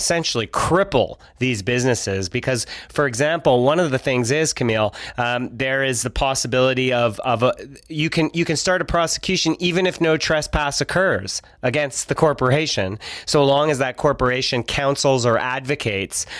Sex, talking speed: male, 160 wpm